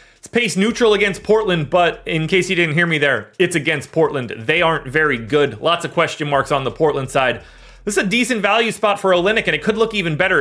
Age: 30-49